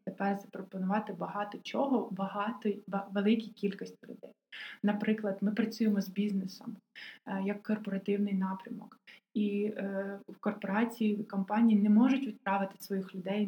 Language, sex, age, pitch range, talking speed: Ukrainian, female, 20-39, 195-220 Hz, 110 wpm